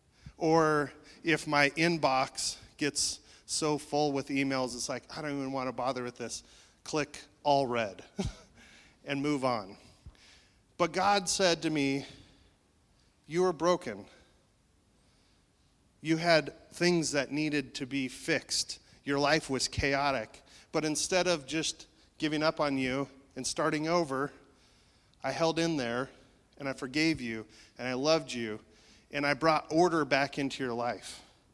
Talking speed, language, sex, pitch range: 145 wpm, English, male, 120-155 Hz